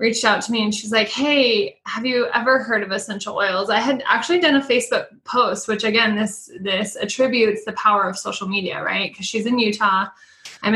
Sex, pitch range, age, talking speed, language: female, 200-240 Hz, 20-39, 210 wpm, English